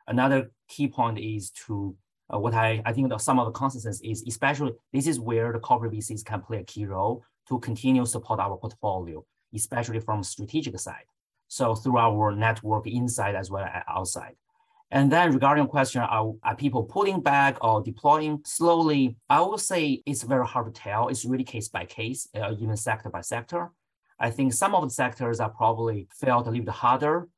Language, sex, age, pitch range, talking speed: English, male, 30-49, 110-135 Hz, 195 wpm